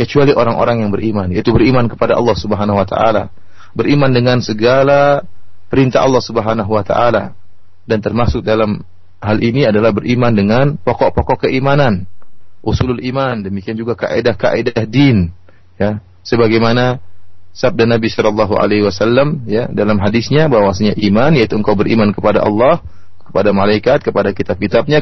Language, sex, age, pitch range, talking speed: Indonesian, male, 30-49, 100-140 Hz, 135 wpm